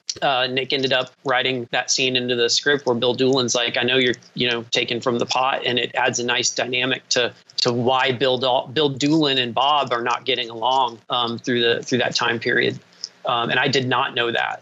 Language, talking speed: English, 225 wpm